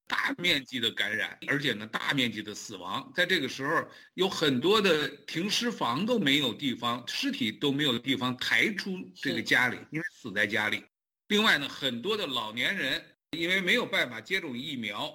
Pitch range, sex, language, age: 125-195 Hz, male, Chinese, 60-79